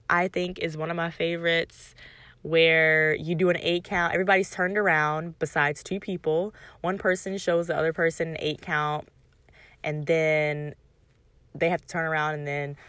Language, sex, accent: English, female, American